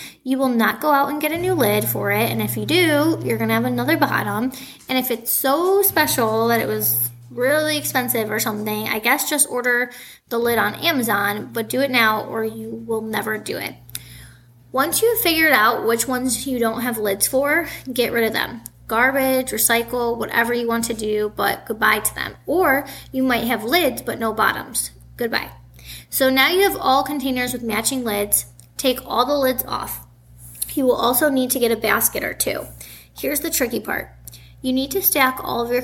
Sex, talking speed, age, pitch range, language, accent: female, 205 wpm, 10-29, 220-265 Hz, English, American